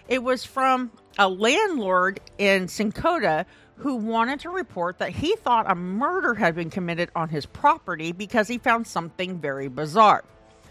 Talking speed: 155 wpm